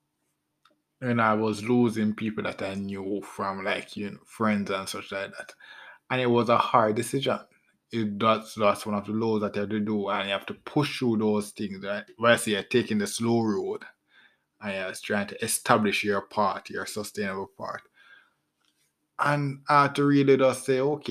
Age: 20-39